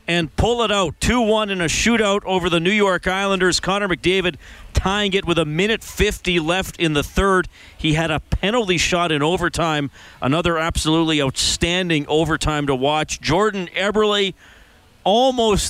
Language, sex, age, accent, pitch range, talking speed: English, male, 40-59, American, 130-170 Hz, 155 wpm